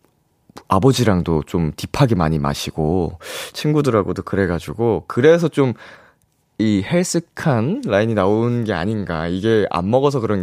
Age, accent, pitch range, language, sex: 20-39, native, 95-155 Hz, Korean, male